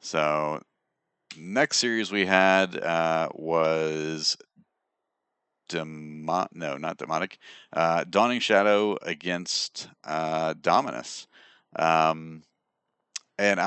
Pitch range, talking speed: 75-90 Hz, 85 wpm